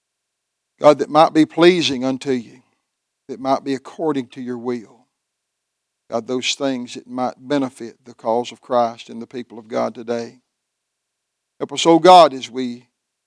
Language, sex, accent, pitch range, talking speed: English, male, American, 125-150 Hz, 165 wpm